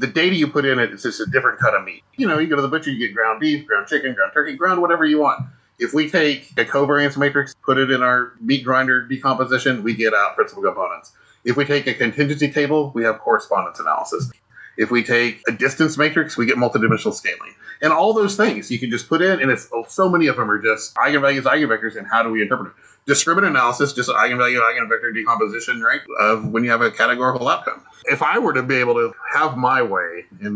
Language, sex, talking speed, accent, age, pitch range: English, male, 240 wpm, American, 30-49, 115-160 Hz